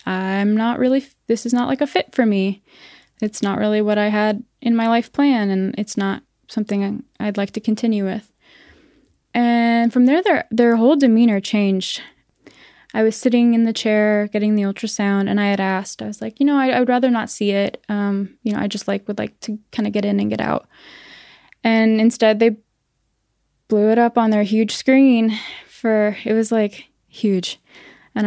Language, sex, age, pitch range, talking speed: English, female, 10-29, 200-235 Hz, 200 wpm